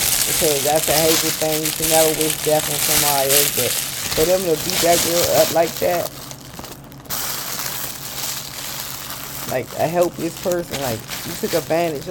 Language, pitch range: English, 140-165 Hz